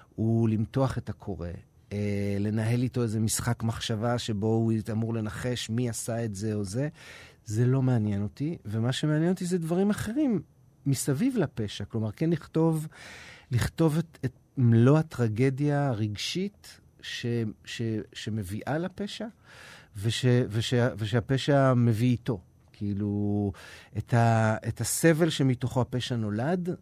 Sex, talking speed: male, 130 wpm